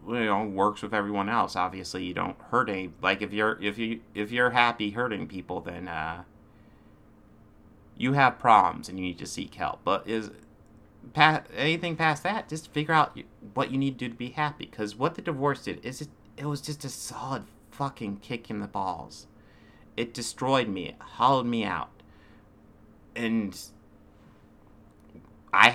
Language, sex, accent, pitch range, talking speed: English, male, American, 100-120 Hz, 170 wpm